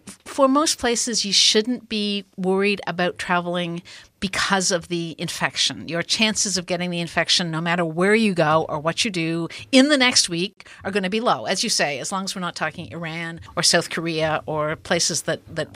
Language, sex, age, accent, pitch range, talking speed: English, female, 50-69, American, 165-205 Hz, 205 wpm